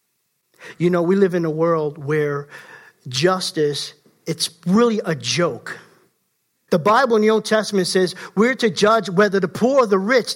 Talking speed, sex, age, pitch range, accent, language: 170 wpm, male, 50-69, 180-235 Hz, American, English